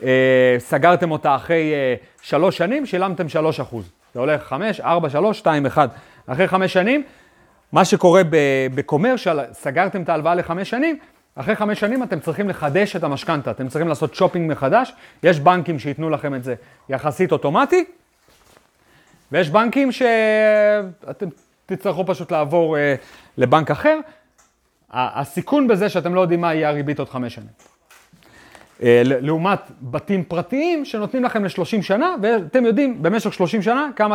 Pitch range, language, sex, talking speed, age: 135-200 Hz, Hebrew, male, 145 wpm, 30-49